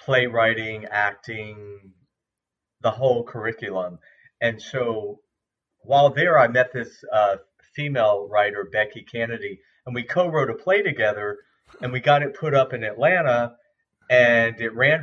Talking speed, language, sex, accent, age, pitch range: 135 wpm, English, male, American, 40-59, 110-140 Hz